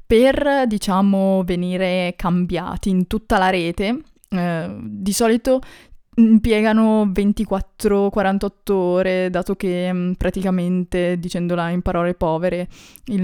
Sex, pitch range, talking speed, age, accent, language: female, 170-200 Hz, 100 wpm, 20-39, native, Italian